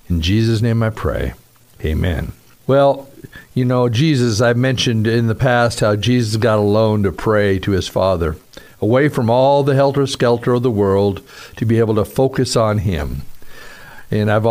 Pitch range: 110-145 Hz